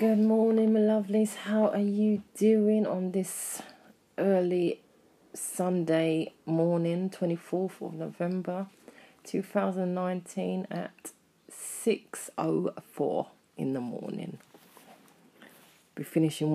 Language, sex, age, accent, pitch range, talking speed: English, female, 30-49, British, 150-185 Hz, 85 wpm